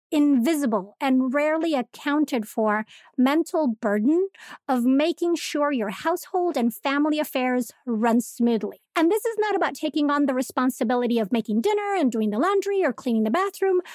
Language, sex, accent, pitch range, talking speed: English, female, American, 245-335 Hz, 160 wpm